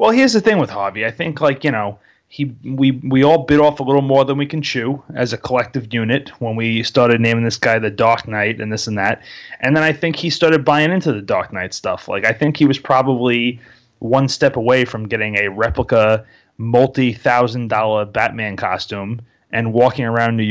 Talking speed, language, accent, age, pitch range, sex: 215 wpm, English, American, 30-49, 115-140 Hz, male